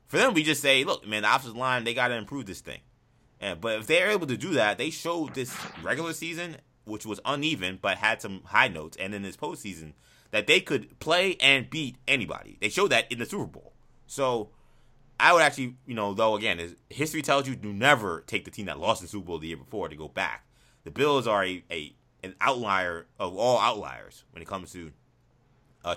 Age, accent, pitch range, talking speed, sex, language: 20-39, American, 85-125 Hz, 225 wpm, male, English